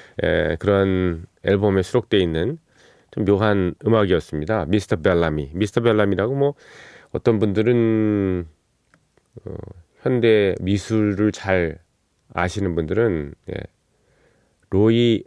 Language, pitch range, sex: Korean, 90-120 Hz, male